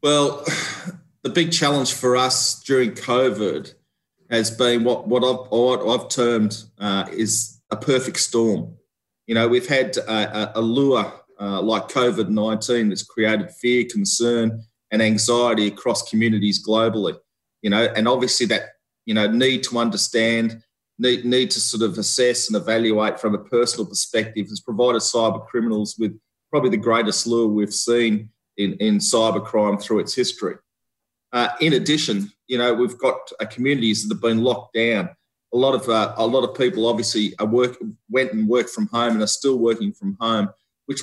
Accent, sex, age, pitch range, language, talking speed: Australian, male, 30-49, 110-125 Hz, English, 170 wpm